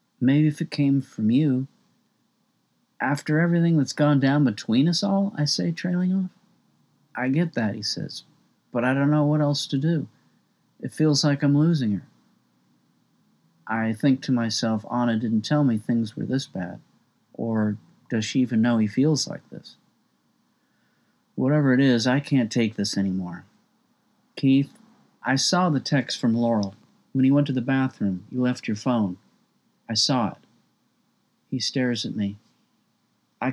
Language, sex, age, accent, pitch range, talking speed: English, male, 50-69, American, 110-145 Hz, 165 wpm